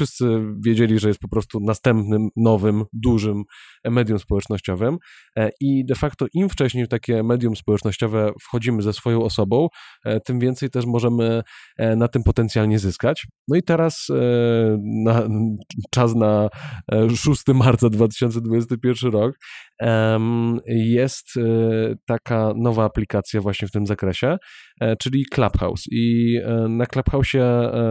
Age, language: 20-39, Polish